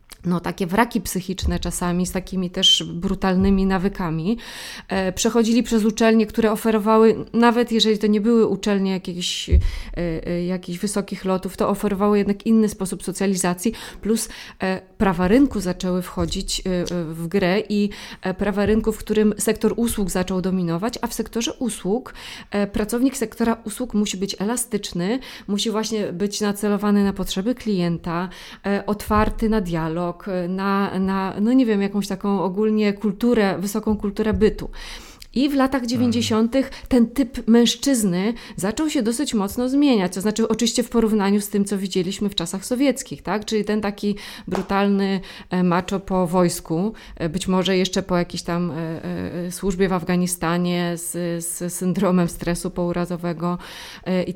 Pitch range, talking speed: 185-225 Hz, 140 wpm